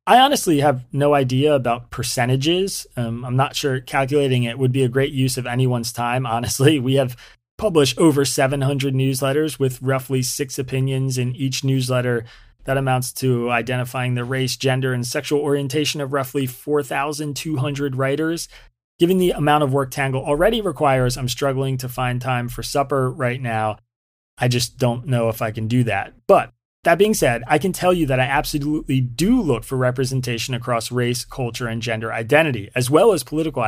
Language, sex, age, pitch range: English, male, 30-49, 120-145 Hz